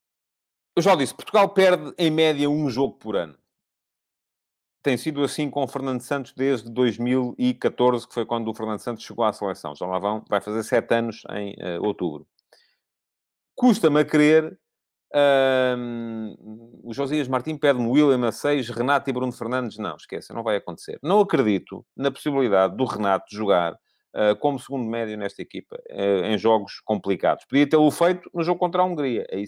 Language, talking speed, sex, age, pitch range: Portuguese, 170 wpm, male, 40-59, 115-160 Hz